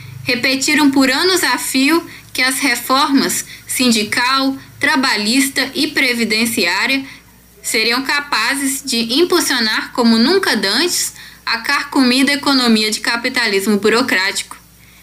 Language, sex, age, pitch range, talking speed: Portuguese, female, 10-29, 215-270 Hz, 100 wpm